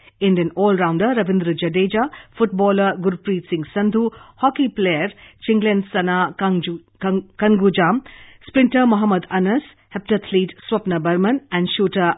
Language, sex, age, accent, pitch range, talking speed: English, female, 50-69, Indian, 170-210 Hz, 115 wpm